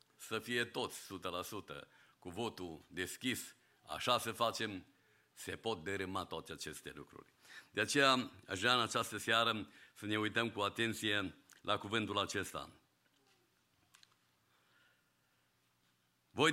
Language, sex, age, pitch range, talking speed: English, male, 50-69, 95-135 Hz, 115 wpm